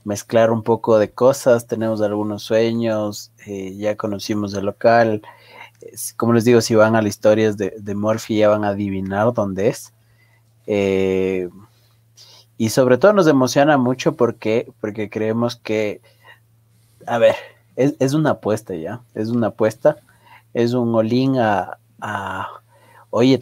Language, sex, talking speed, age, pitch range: Spanish, male, 150 wpm, 30-49, 105-120 Hz